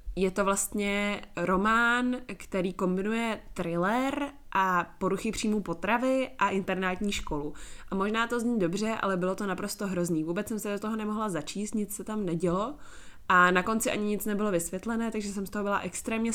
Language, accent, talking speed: Czech, native, 175 wpm